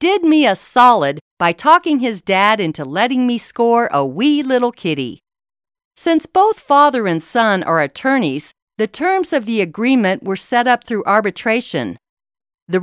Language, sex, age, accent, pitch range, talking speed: English, female, 50-69, American, 195-285 Hz, 160 wpm